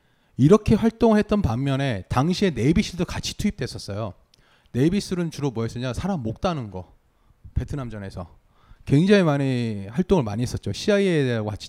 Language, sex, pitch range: Korean, male, 115-185 Hz